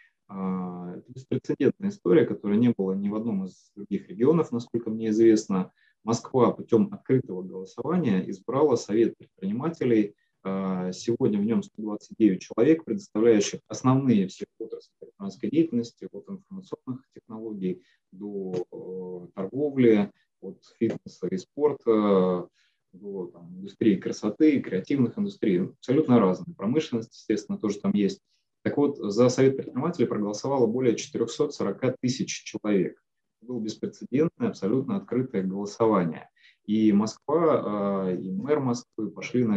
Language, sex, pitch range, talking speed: Russian, male, 100-150 Hz, 115 wpm